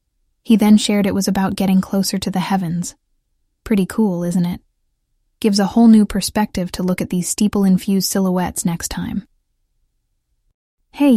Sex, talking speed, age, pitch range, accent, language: female, 155 wpm, 10-29, 190-220 Hz, American, English